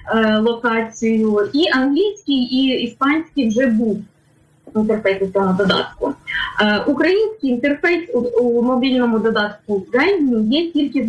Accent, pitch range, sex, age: native, 225-285 Hz, female, 20-39